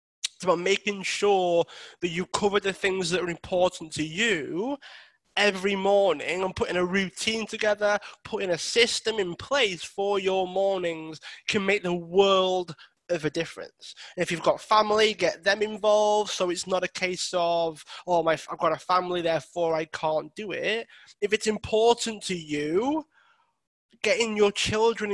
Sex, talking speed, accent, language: male, 160 wpm, British, English